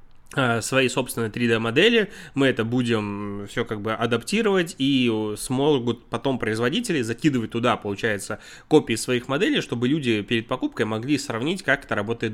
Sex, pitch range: male, 110-130 Hz